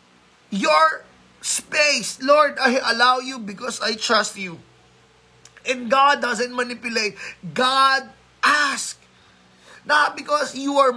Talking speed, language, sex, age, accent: 110 wpm, Filipino, male, 20-39, native